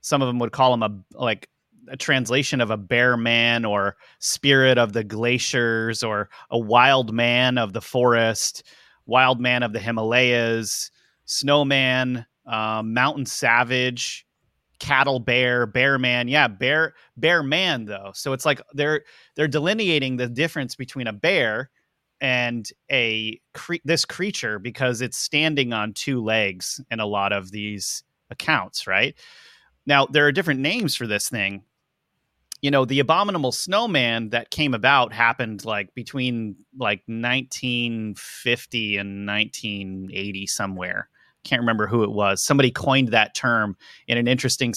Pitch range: 110-130 Hz